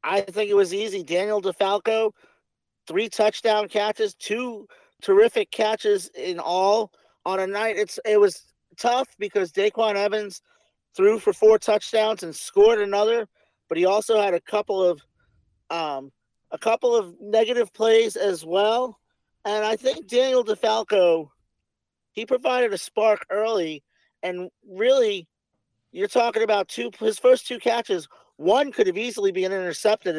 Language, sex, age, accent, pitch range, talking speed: English, male, 40-59, American, 195-255 Hz, 145 wpm